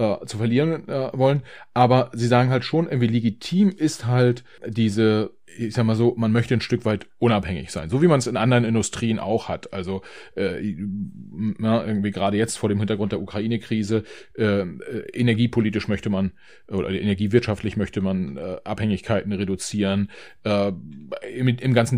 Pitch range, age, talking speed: 100-120 Hz, 30-49, 160 wpm